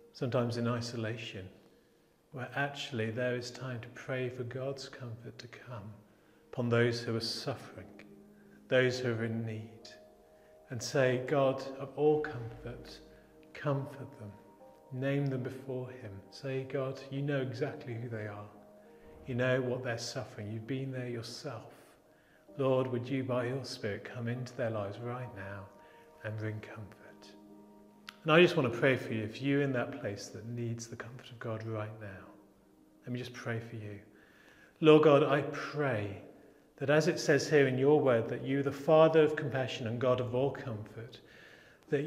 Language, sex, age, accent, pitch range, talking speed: English, male, 40-59, British, 110-135 Hz, 170 wpm